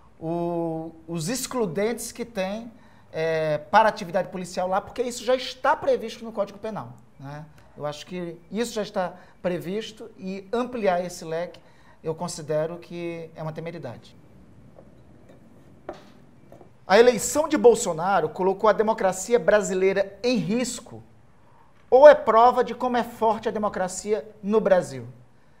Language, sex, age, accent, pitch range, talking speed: Portuguese, male, 50-69, Brazilian, 170-230 Hz, 130 wpm